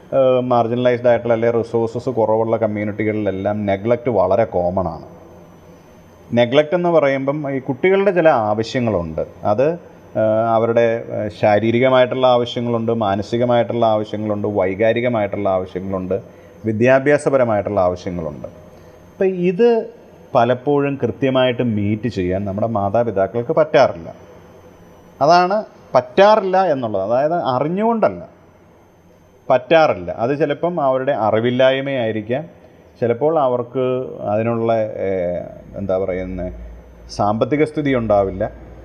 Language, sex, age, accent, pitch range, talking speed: Malayalam, male, 30-49, native, 105-145 Hz, 80 wpm